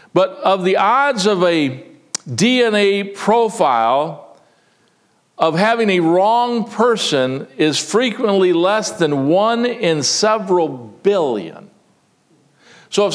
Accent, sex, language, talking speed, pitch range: American, male, English, 105 wpm, 170-230 Hz